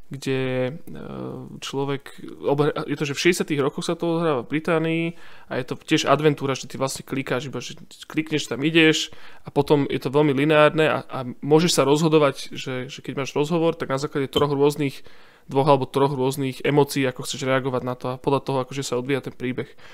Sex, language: male, Slovak